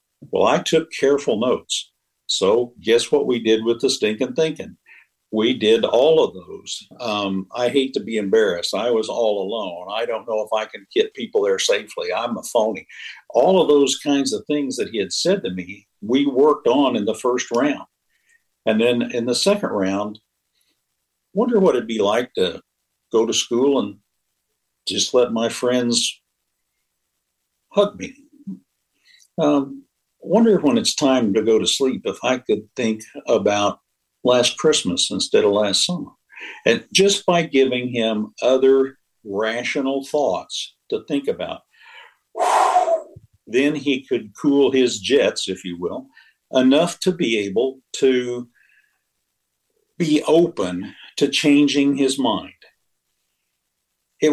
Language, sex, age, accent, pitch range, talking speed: English, male, 60-79, American, 105-170 Hz, 150 wpm